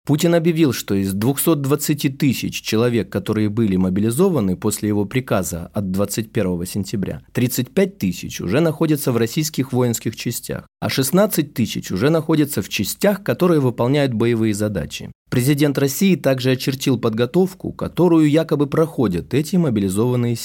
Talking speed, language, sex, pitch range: 130 wpm, Russian, male, 115-160 Hz